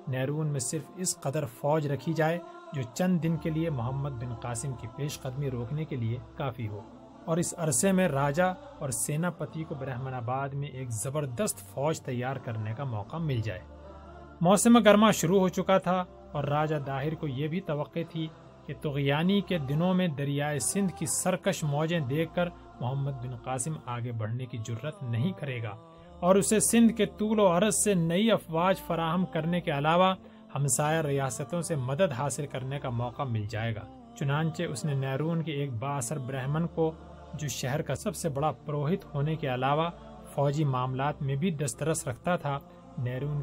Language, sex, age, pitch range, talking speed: Urdu, male, 30-49, 130-165 Hz, 180 wpm